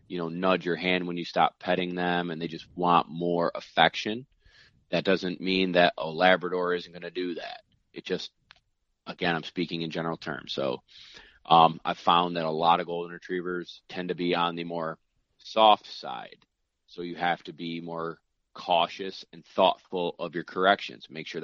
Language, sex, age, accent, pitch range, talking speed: English, male, 30-49, American, 85-95 Hz, 190 wpm